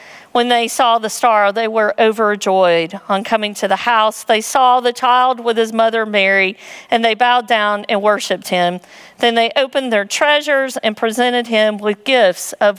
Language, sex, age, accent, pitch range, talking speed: English, female, 50-69, American, 220-285 Hz, 185 wpm